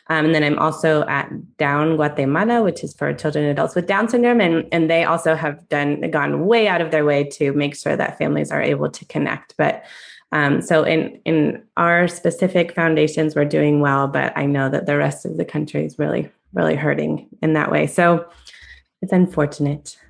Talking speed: 205 wpm